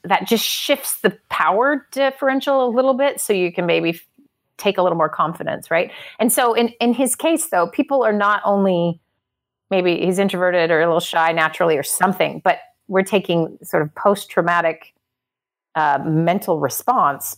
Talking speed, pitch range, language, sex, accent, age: 170 wpm, 165-220 Hz, English, female, American, 30-49